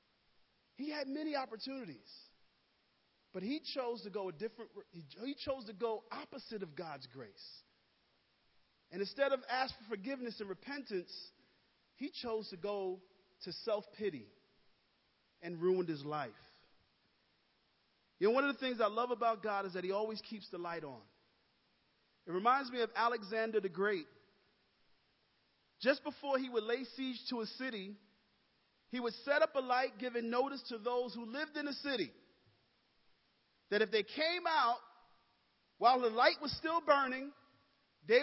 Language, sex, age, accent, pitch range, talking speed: English, male, 40-59, American, 220-310 Hz, 155 wpm